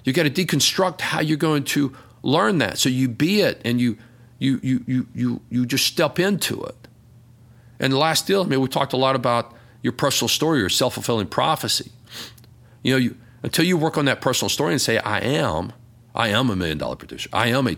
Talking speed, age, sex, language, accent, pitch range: 220 wpm, 40-59, male, English, American, 110-130 Hz